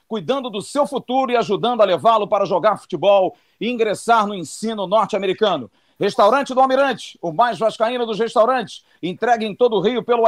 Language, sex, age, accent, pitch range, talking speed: Portuguese, male, 50-69, Brazilian, 215-260 Hz, 175 wpm